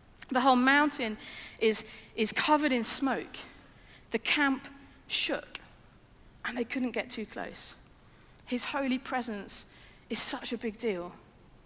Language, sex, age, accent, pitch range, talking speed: English, female, 40-59, British, 230-285 Hz, 130 wpm